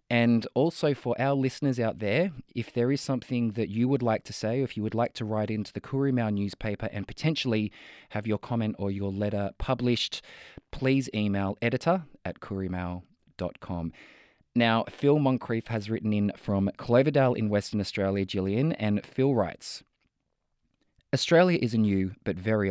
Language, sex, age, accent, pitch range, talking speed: English, male, 20-39, Australian, 95-125 Hz, 165 wpm